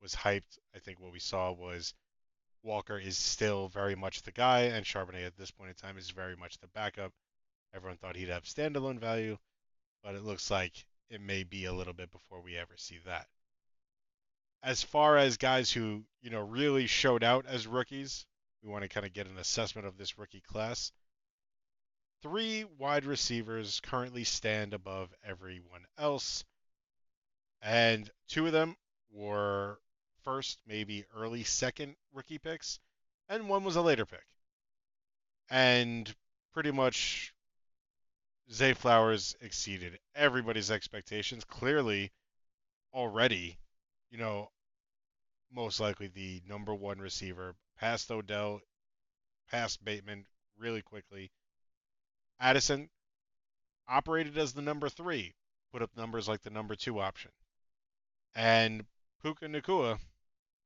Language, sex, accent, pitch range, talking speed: English, male, American, 95-125 Hz, 135 wpm